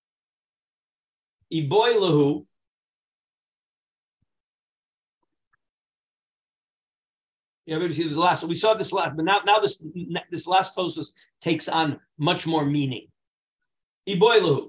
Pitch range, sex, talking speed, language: 140-195 Hz, male, 100 wpm, English